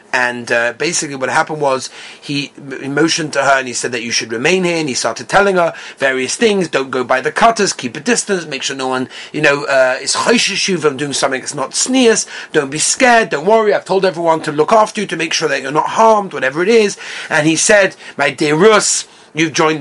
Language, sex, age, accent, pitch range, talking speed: English, male, 30-49, British, 135-175 Hz, 230 wpm